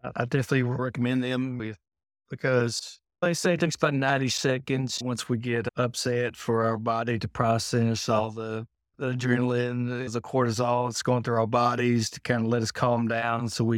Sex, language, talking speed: male, English, 180 wpm